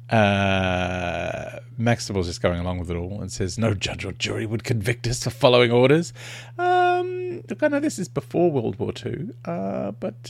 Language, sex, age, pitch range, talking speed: English, male, 30-49, 95-125 Hz, 185 wpm